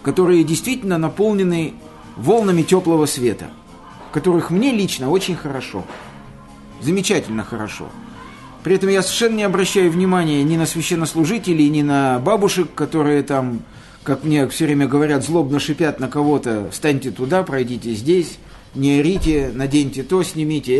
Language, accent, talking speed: Russian, native, 135 wpm